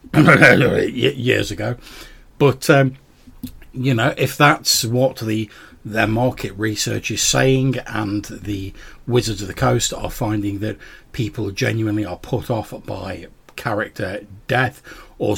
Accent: British